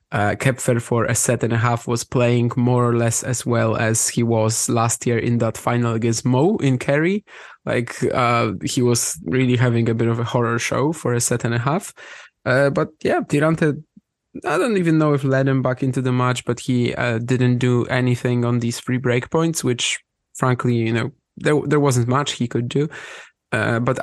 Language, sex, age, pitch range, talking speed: English, male, 20-39, 115-135 Hz, 205 wpm